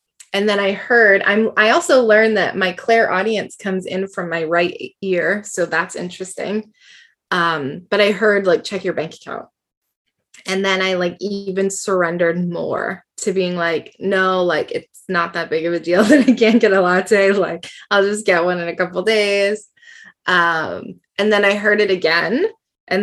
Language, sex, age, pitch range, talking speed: English, female, 20-39, 165-210 Hz, 195 wpm